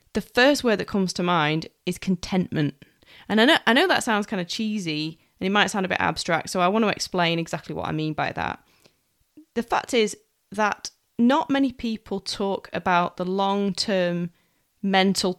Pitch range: 175-215 Hz